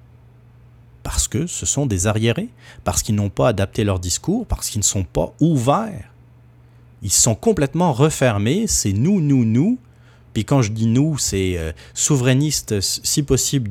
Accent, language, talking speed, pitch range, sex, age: French, French, 160 wpm, 90-125 Hz, male, 30-49